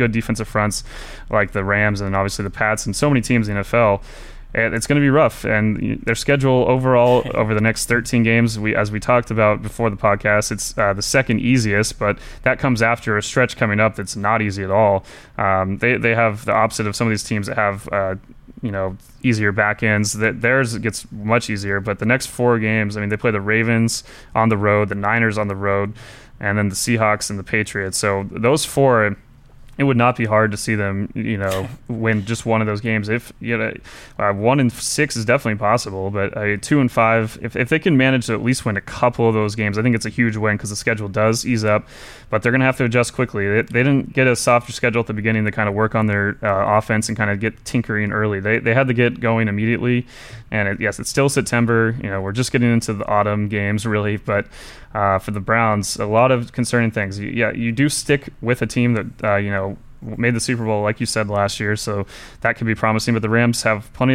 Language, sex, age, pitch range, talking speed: English, male, 20-39, 105-120 Hz, 245 wpm